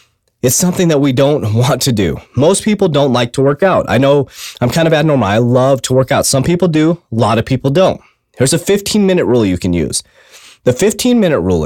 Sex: male